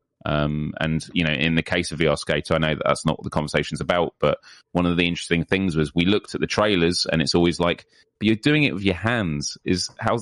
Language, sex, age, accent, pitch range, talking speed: English, male, 30-49, British, 80-105 Hz, 260 wpm